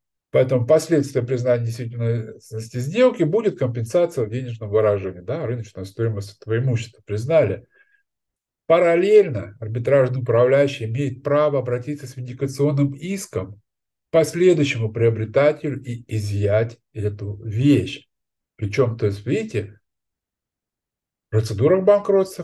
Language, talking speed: Russian, 105 wpm